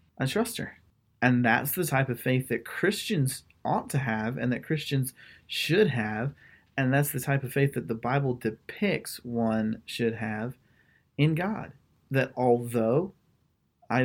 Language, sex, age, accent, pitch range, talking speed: English, male, 30-49, American, 115-140 Hz, 155 wpm